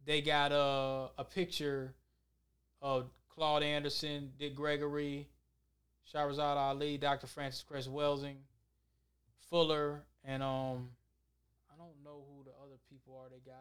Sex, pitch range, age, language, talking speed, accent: male, 125-155 Hz, 20-39, English, 130 wpm, American